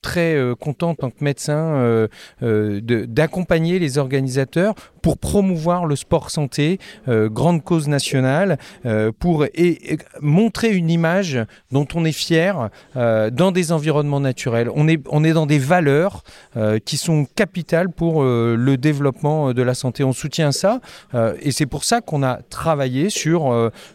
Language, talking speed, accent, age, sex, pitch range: French, 170 wpm, French, 40-59, male, 130-175 Hz